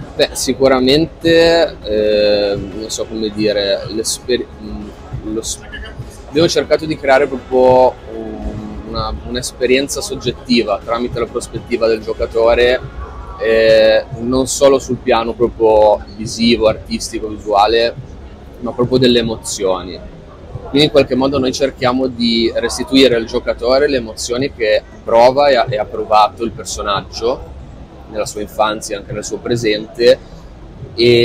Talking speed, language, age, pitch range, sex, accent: 115 wpm, Italian, 20-39, 110-130 Hz, male, native